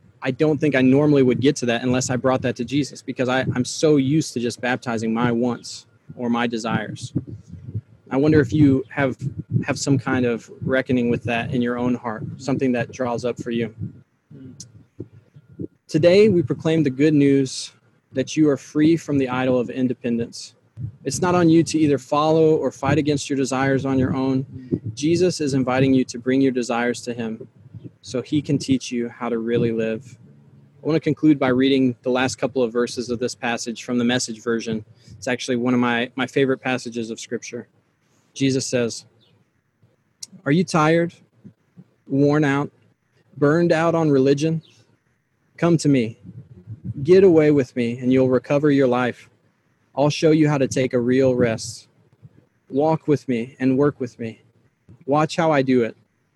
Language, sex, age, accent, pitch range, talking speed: English, male, 20-39, American, 120-145 Hz, 180 wpm